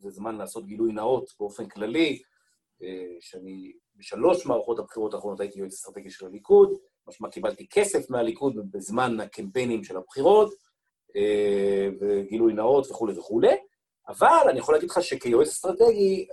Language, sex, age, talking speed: Hebrew, male, 40-59, 130 wpm